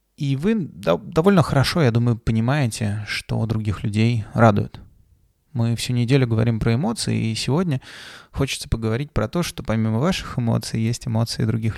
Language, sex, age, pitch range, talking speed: Russian, male, 20-39, 105-130 Hz, 155 wpm